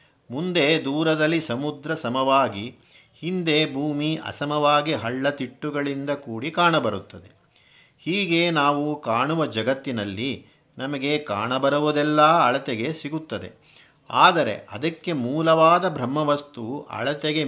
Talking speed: 80 wpm